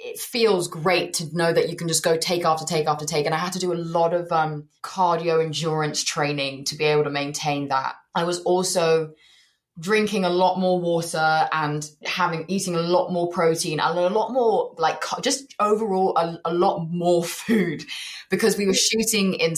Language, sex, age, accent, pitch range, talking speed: English, female, 20-39, British, 155-195 Hz, 200 wpm